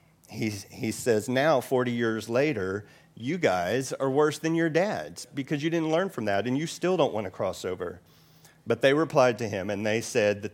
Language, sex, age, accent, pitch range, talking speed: English, male, 40-59, American, 105-140 Hz, 210 wpm